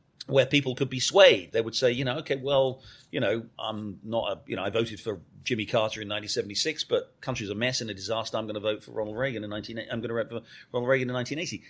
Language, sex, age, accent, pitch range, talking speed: English, male, 40-59, British, 115-145 Hz, 260 wpm